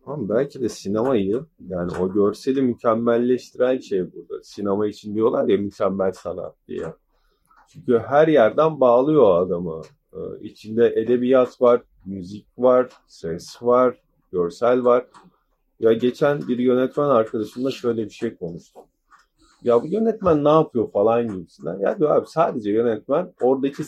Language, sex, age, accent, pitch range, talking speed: Turkish, male, 40-59, native, 115-160 Hz, 135 wpm